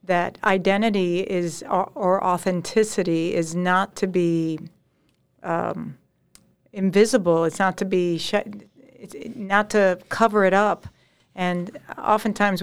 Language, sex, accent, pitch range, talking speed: English, female, American, 180-215 Hz, 105 wpm